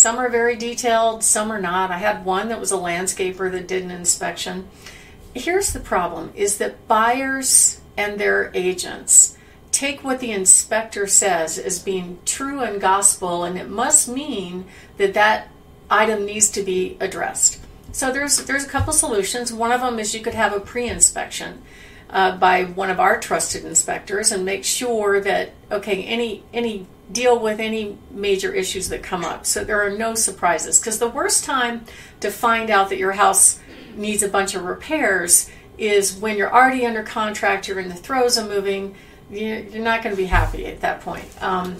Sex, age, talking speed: female, 50-69, 180 wpm